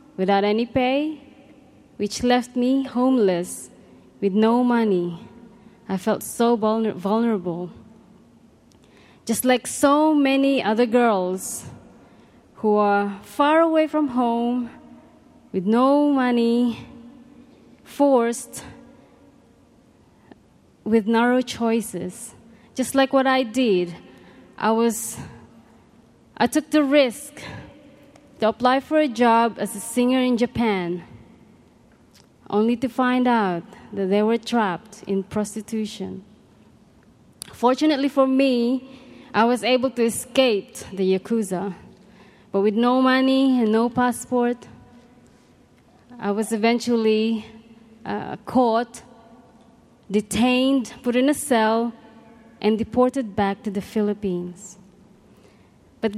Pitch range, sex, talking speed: 210-255 Hz, female, 105 wpm